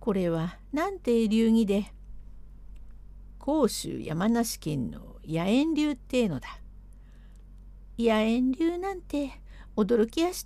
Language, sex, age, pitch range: Japanese, female, 60-79, 180-270 Hz